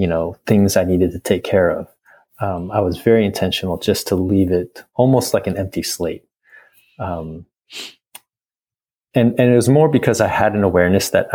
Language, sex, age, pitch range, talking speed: English, male, 30-49, 90-120 Hz, 185 wpm